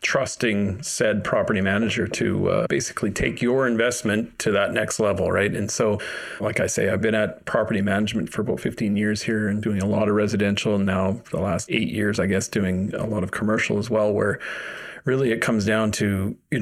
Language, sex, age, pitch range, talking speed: English, male, 40-59, 100-115 Hz, 215 wpm